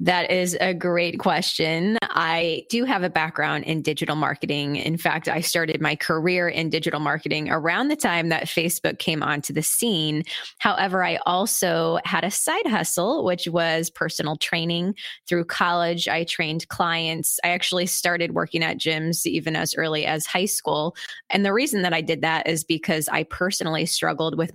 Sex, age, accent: female, 20-39, American